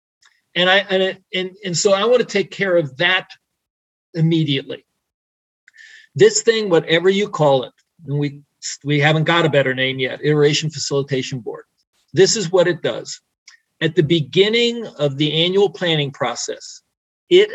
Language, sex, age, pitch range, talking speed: German, male, 50-69, 150-195 Hz, 160 wpm